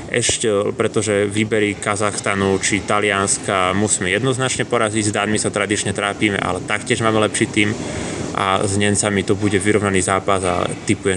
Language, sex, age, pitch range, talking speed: Slovak, male, 20-39, 95-110 Hz, 150 wpm